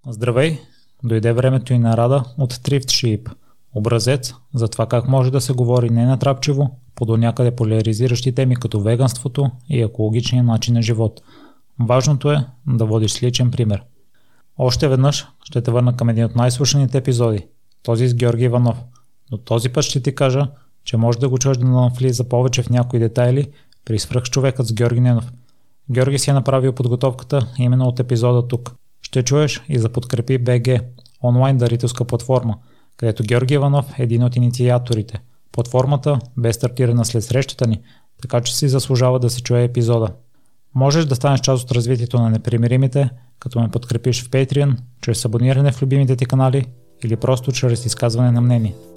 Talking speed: 170 wpm